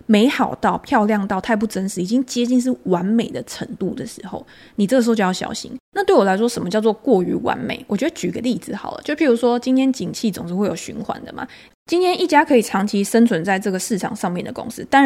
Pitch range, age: 195-255 Hz, 20-39